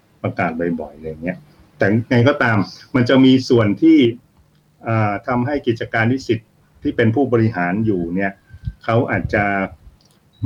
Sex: male